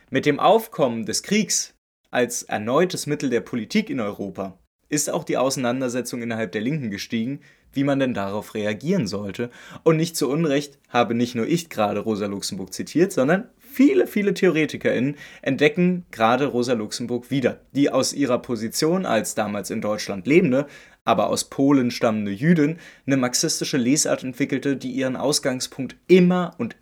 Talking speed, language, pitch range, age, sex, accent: 155 wpm, German, 120-165 Hz, 20-39, male, German